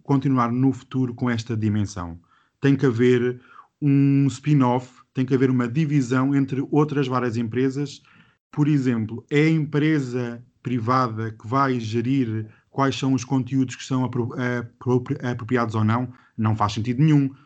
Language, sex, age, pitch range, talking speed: Portuguese, male, 20-39, 120-145 Hz, 145 wpm